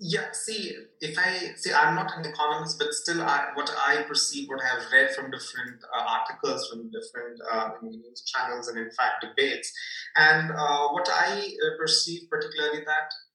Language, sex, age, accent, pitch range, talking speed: English, male, 30-49, Indian, 115-170 Hz, 165 wpm